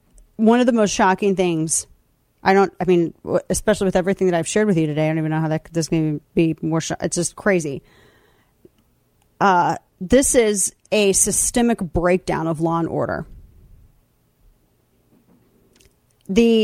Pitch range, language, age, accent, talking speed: 170-220 Hz, English, 40-59, American, 155 wpm